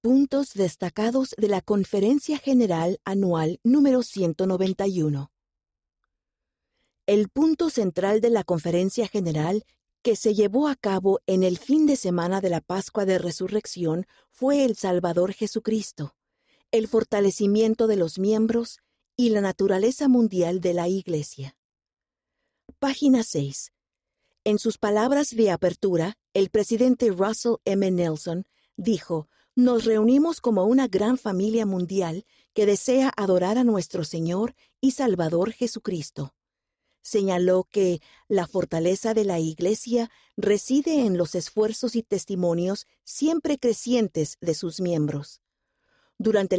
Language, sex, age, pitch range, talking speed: Spanish, female, 50-69, 180-235 Hz, 120 wpm